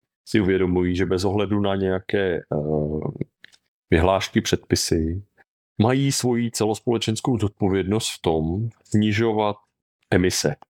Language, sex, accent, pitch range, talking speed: English, male, Czech, 90-105 Hz, 100 wpm